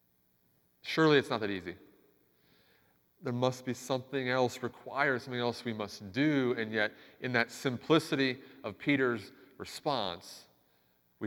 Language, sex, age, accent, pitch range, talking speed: English, male, 30-49, American, 100-130 Hz, 135 wpm